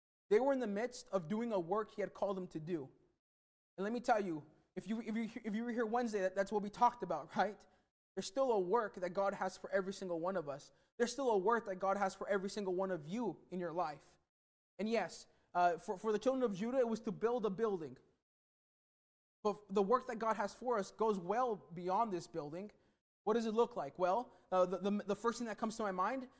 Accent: American